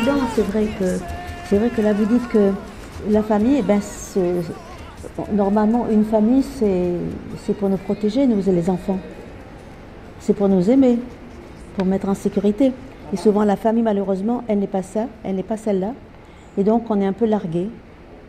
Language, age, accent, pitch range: French, 50-69, French, 195-230 Hz